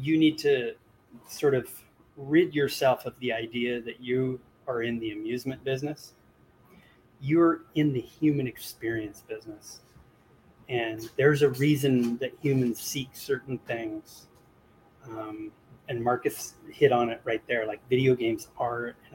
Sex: male